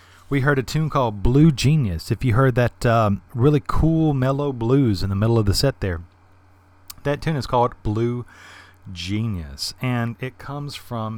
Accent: American